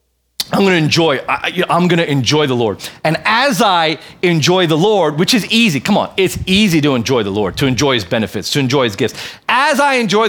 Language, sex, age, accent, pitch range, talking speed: English, male, 40-59, American, 185-245 Hz, 210 wpm